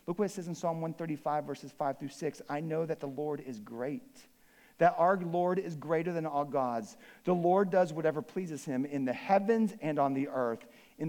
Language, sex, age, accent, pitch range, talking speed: English, male, 50-69, American, 140-190 Hz, 215 wpm